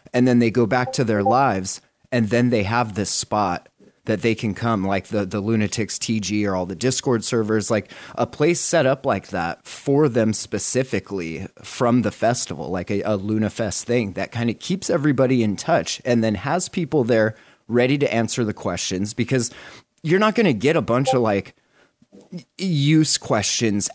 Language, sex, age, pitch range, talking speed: English, male, 30-49, 105-135 Hz, 190 wpm